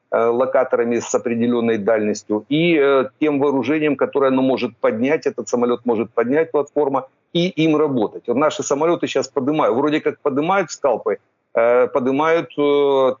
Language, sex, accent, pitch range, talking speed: Ukrainian, male, native, 125-150 Hz, 145 wpm